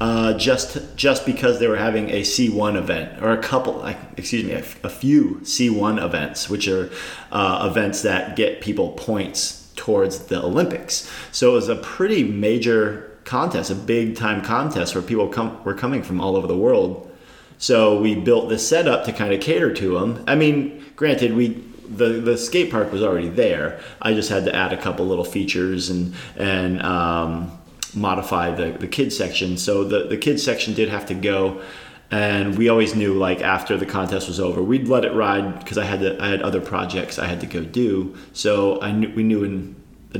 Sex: male